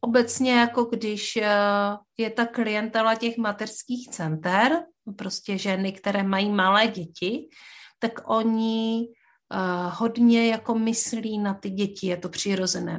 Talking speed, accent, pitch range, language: 120 wpm, native, 195-230 Hz, Czech